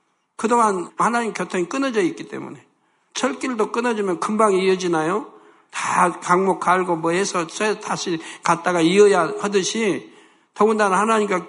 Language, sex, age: Korean, male, 60-79